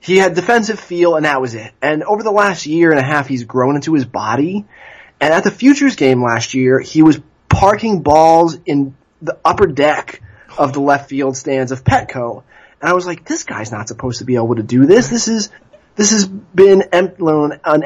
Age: 20-39